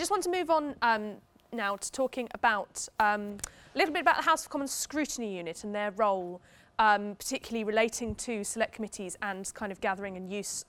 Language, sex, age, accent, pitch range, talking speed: English, female, 20-39, British, 200-255 Hz, 200 wpm